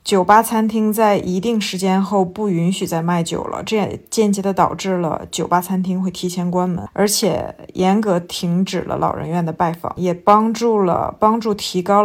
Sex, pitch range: female, 175-205 Hz